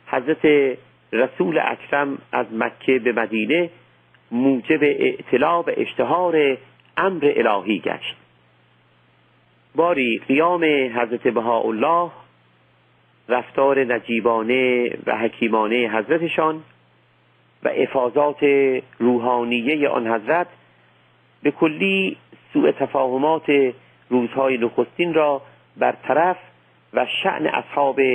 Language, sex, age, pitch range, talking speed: Persian, male, 50-69, 110-140 Hz, 80 wpm